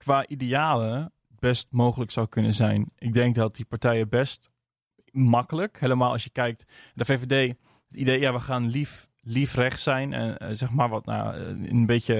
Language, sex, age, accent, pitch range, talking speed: Dutch, male, 20-39, Dutch, 115-130 Hz, 185 wpm